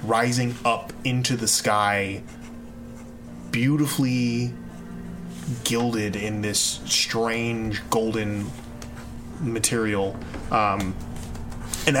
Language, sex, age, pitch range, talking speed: English, male, 20-39, 110-125 Hz, 70 wpm